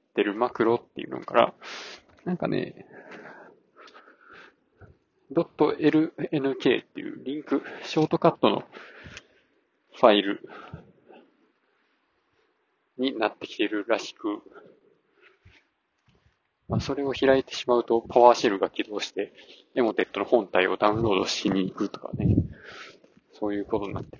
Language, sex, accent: Japanese, male, native